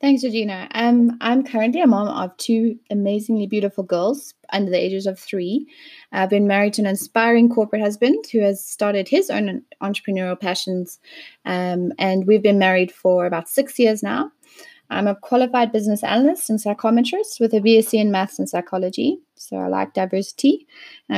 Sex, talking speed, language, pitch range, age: female, 175 wpm, English, 185-230 Hz, 20-39